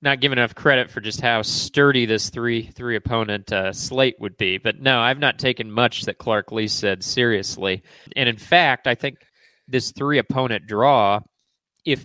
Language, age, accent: English, 30-49, American